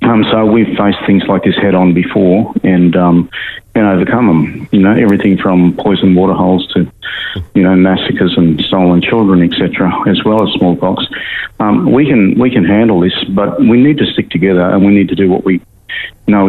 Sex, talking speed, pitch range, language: male, 200 wpm, 90-100 Hz, English